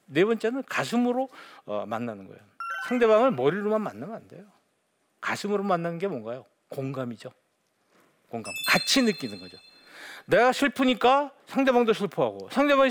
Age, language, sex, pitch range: 50-69, Korean, male, 140-220 Hz